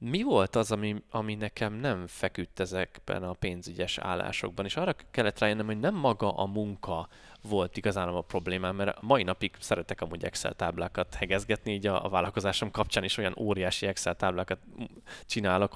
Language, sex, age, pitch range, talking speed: Hungarian, male, 20-39, 95-115 Hz, 170 wpm